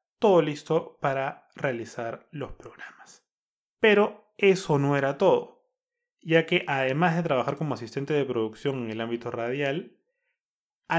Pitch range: 125-175 Hz